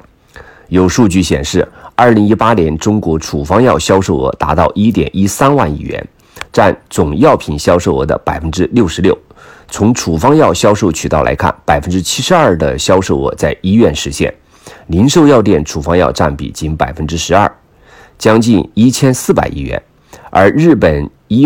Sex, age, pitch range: male, 50-69, 75-95 Hz